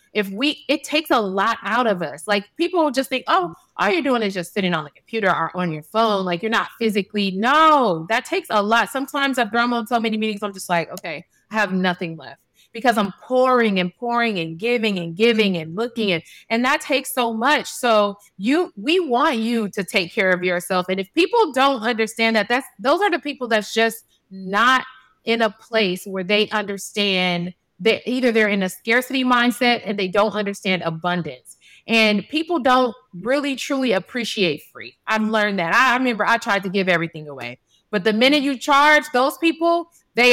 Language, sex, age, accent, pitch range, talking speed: English, female, 30-49, American, 195-255 Hz, 200 wpm